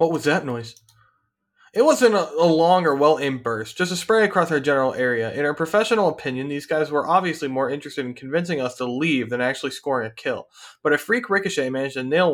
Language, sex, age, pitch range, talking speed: English, male, 20-39, 135-180 Hz, 225 wpm